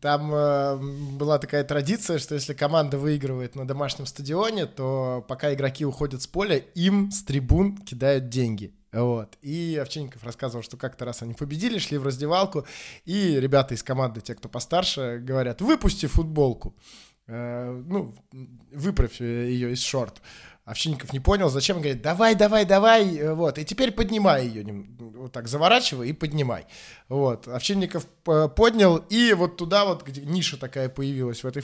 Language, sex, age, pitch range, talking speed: Russian, male, 20-39, 130-175 Hz, 155 wpm